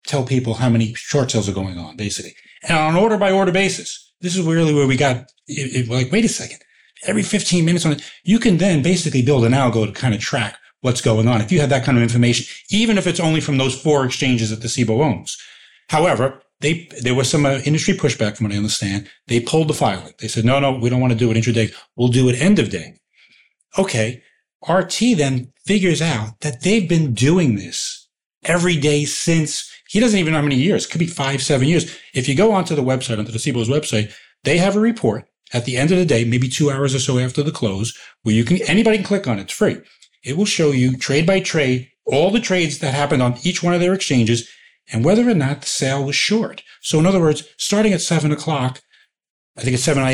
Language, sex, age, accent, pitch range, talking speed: English, male, 30-49, American, 120-170 Hz, 235 wpm